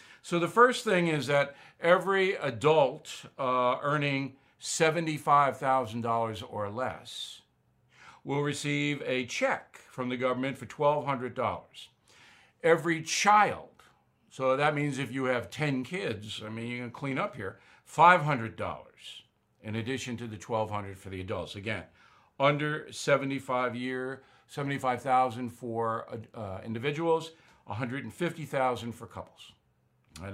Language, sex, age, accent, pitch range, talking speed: English, male, 60-79, American, 115-150 Hz, 120 wpm